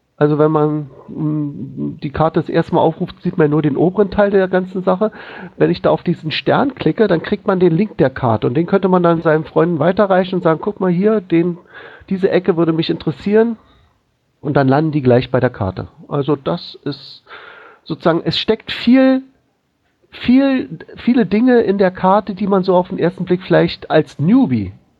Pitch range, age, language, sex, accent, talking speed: 145-195 Hz, 50-69, German, male, German, 195 wpm